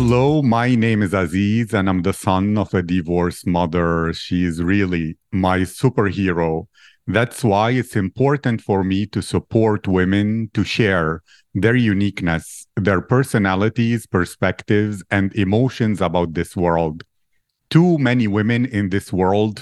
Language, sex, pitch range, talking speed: English, male, 95-115 Hz, 140 wpm